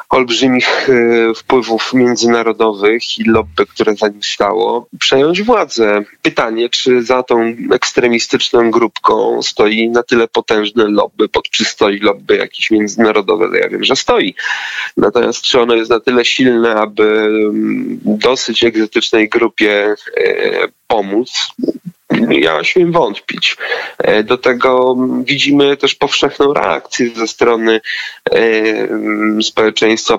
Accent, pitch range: native, 110-135 Hz